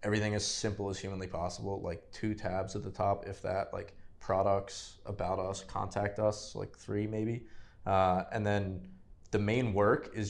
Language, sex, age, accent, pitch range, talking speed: English, male, 20-39, American, 95-105 Hz, 175 wpm